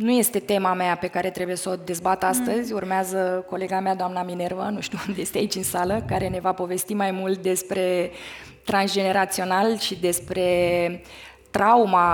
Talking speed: 170 wpm